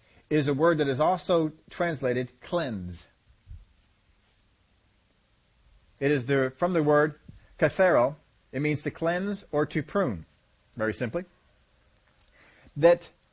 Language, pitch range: English, 130-170 Hz